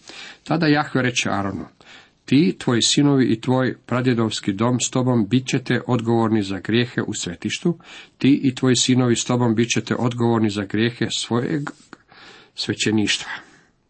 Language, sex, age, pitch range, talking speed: Croatian, male, 50-69, 110-125 Hz, 140 wpm